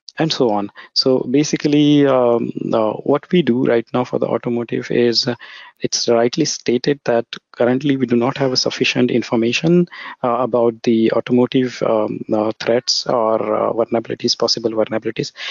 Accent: Indian